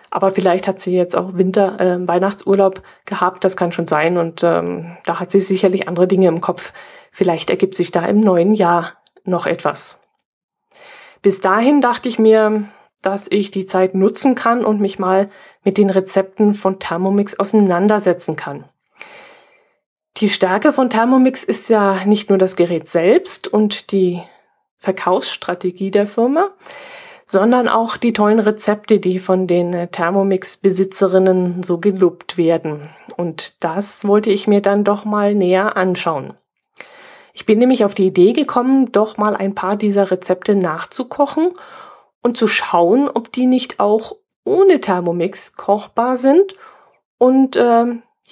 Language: German